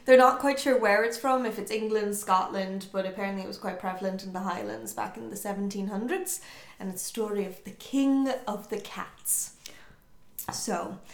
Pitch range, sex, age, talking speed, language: 190-220 Hz, female, 20-39, 190 wpm, English